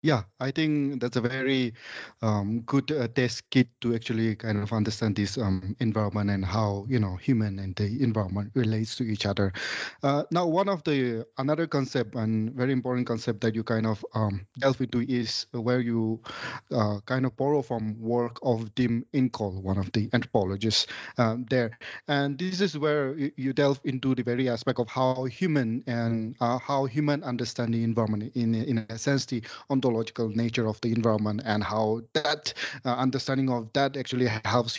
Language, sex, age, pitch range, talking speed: English, male, 30-49, 110-130 Hz, 185 wpm